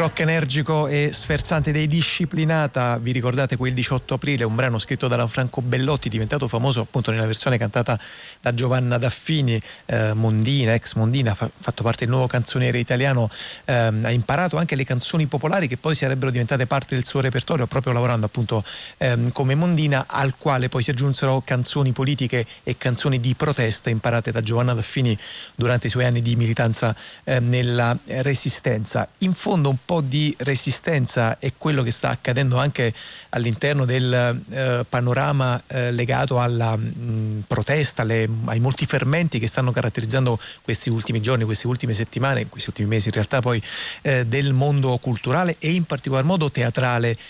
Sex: male